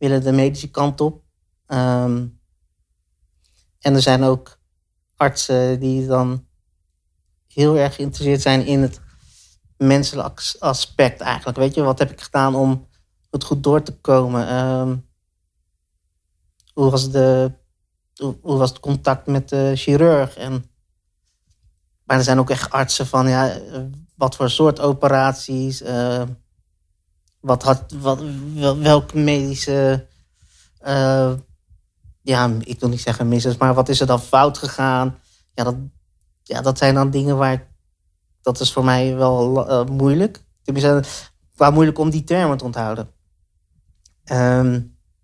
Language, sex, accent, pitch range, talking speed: Dutch, male, Dutch, 85-140 Hz, 125 wpm